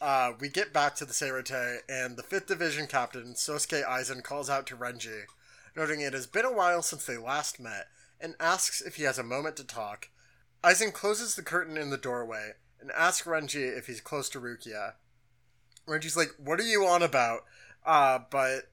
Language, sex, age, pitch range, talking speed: English, male, 30-49, 125-165 Hz, 195 wpm